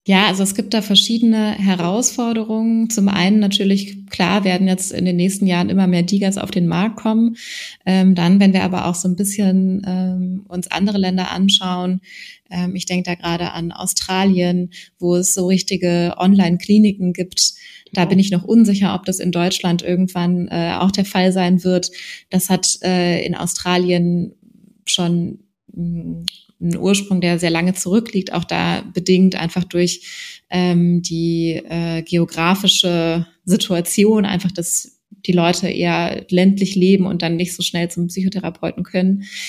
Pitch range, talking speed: 175-195 Hz, 160 wpm